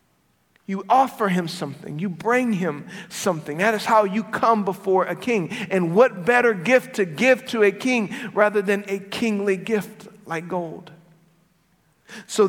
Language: English